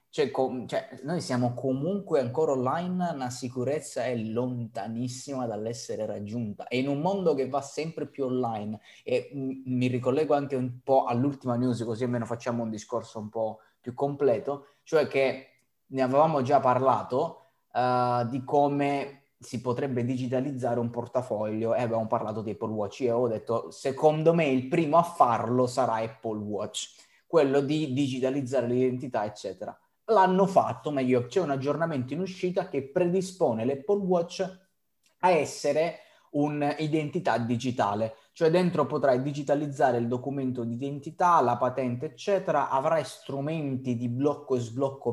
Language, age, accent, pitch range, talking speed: Italian, 20-39, native, 120-150 Hz, 150 wpm